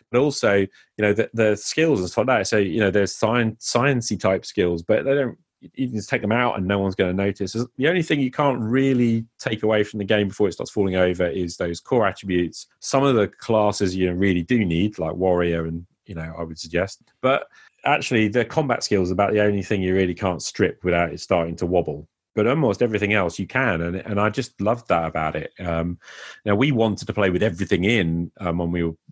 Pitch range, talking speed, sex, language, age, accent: 90-110 Hz, 235 wpm, male, English, 30-49, British